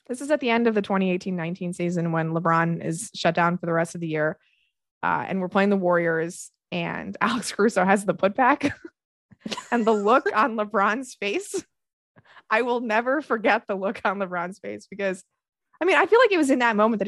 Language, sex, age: English, female, 20-39